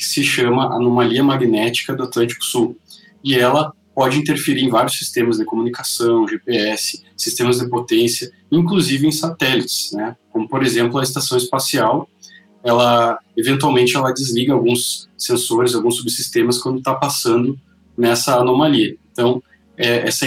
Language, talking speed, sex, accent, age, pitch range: Portuguese, 140 wpm, male, Brazilian, 20-39, 120-145 Hz